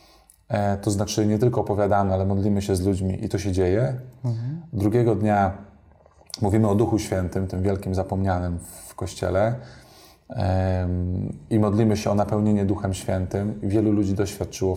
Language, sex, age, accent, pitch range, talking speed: Polish, male, 20-39, native, 95-110 Hz, 140 wpm